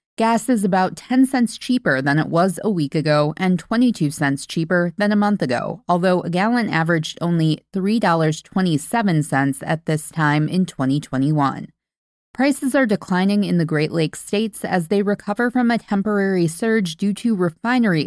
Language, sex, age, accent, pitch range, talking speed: English, female, 20-39, American, 160-205 Hz, 165 wpm